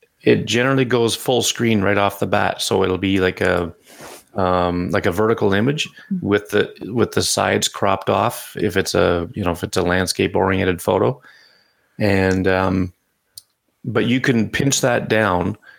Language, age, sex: English, 30-49, male